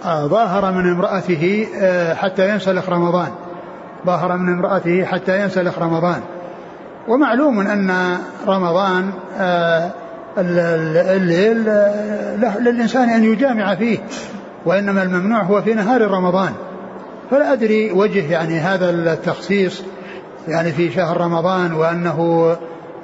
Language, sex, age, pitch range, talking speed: Arabic, male, 60-79, 170-200 Hz, 95 wpm